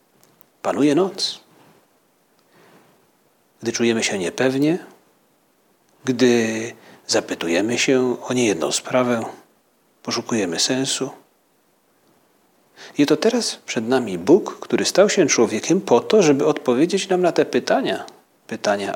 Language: Polish